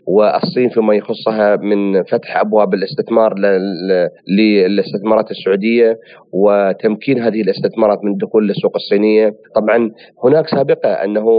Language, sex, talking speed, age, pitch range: Arabic, male, 105 wpm, 40-59, 105-130 Hz